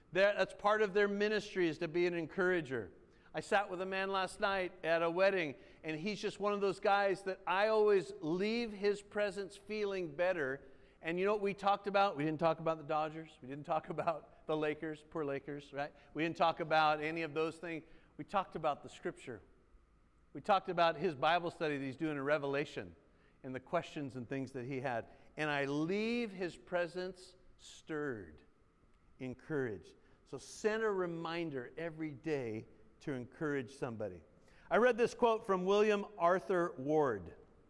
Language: English